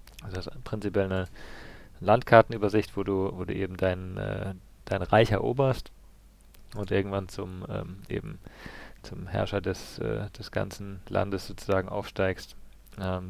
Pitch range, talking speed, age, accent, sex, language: 95-110 Hz, 135 wpm, 40-59, German, male, German